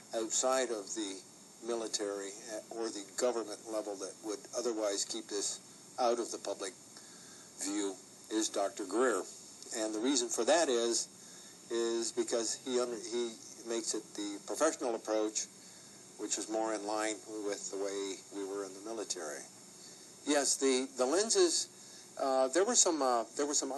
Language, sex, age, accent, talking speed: English, male, 60-79, American, 155 wpm